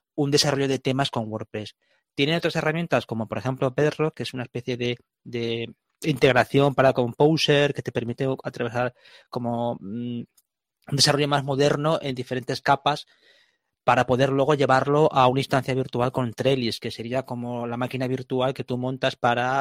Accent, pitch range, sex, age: Spanish, 120-145 Hz, male, 20-39